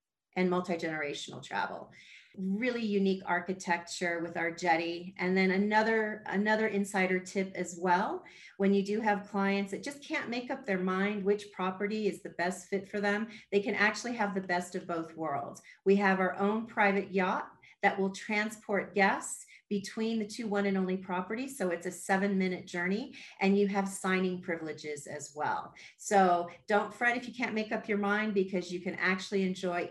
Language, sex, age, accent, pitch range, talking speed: English, female, 40-59, American, 180-215 Hz, 180 wpm